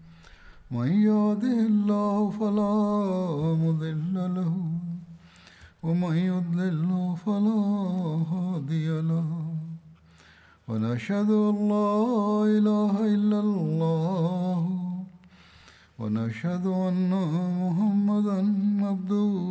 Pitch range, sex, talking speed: 160-205 Hz, male, 35 wpm